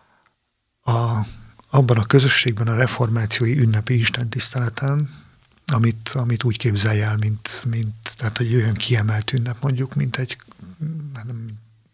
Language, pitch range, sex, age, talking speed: Hungarian, 115-130 Hz, male, 50-69, 120 wpm